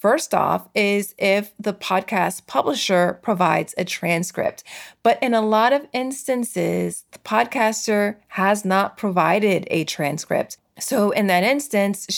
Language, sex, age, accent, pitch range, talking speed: English, female, 30-49, American, 175-205 Hz, 135 wpm